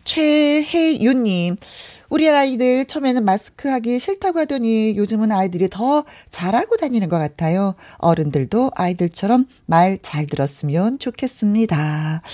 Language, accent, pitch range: Korean, native, 165-245 Hz